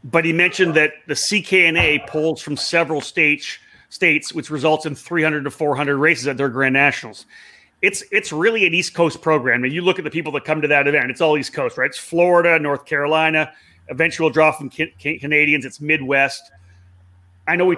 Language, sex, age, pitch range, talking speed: English, male, 30-49, 140-170 Hz, 205 wpm